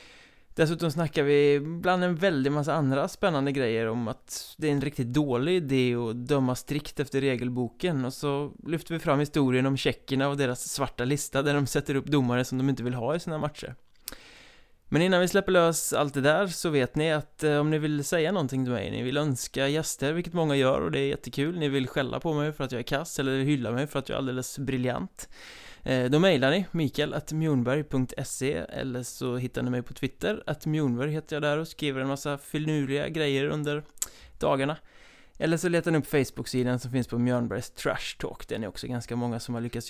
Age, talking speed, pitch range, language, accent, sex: 20-39, 215 wpm, 130-155 Hz, Swedish, native, male